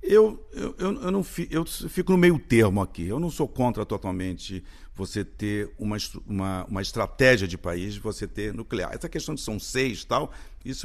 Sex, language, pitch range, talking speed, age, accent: male, Portuguese, 100-160 Hz, 190 wpm, 50-69, Brazilian